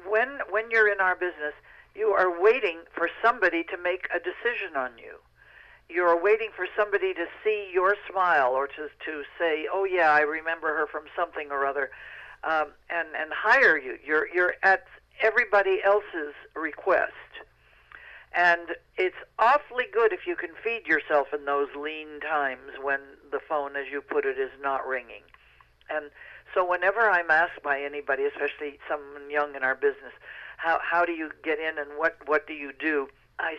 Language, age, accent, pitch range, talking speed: English, 60-79, American, 150-205 Hz, 175 wpm